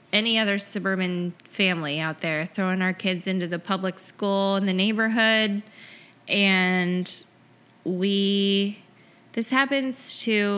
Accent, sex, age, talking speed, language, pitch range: American, female, 20-39, 120 wpm, English, 180-210 Hz